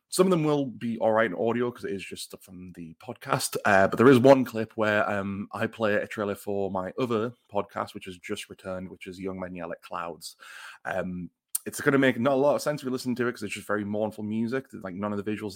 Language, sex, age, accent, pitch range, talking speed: English, male, 20-39, British, 95-120 Hz, 260 wpm